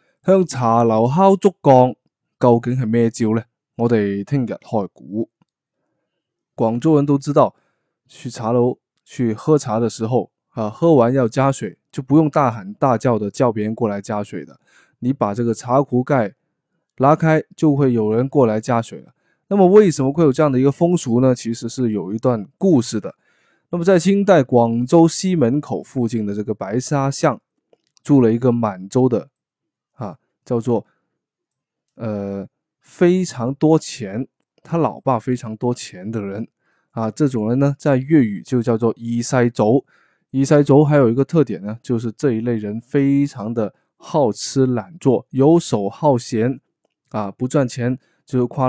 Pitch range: 115-145 Hz